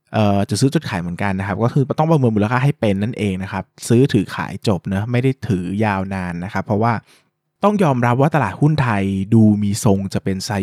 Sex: male